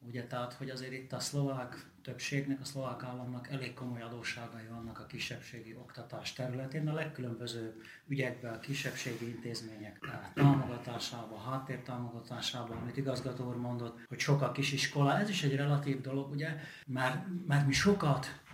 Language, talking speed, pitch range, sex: Hungarian, 150 wpm, 125-145 Hz, male